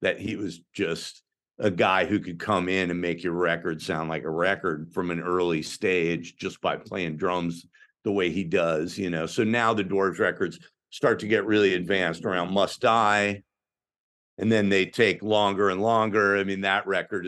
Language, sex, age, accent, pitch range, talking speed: English, male, 50-69, American, 85-100 Hz, 195 wpm